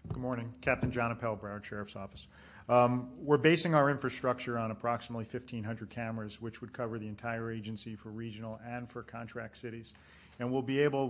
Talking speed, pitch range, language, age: 175 wpm, 110-125 Hz, English, 40-59